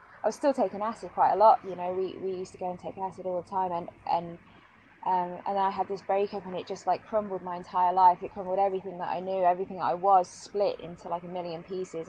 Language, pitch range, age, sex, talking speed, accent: English, 175-195 Hz, 20-39, female, 265 wpm, British